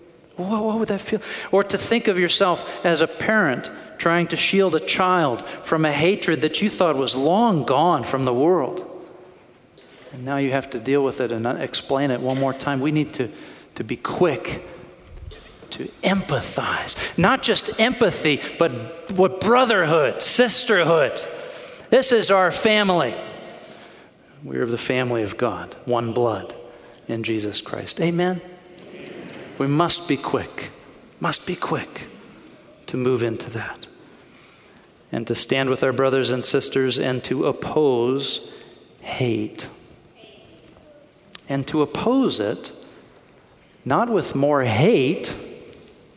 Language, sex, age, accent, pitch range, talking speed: English, male, 40-59, American, 130-190 Hz, 135 wpm